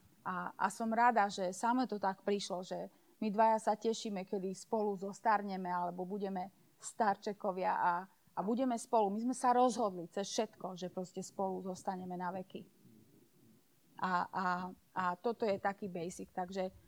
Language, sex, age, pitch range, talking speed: Slovak, female, 30-49, 195-235 Hz, 155 wpm